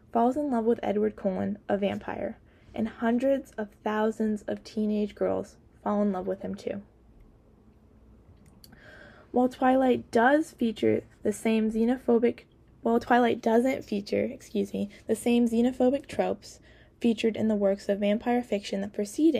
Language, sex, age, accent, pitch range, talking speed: English, female, 10-29, American, 205-240 Hz, 150 wpm